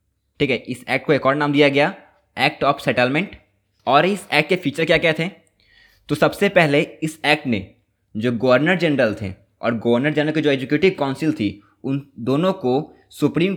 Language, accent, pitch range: Hindi, native, 115-155 Hz